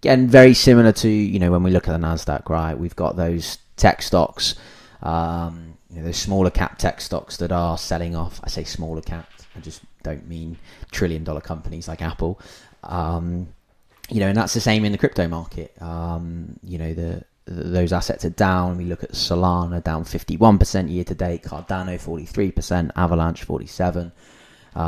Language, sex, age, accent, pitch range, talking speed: English, male, 20-39, British, 85-95 Hz, 180 wpm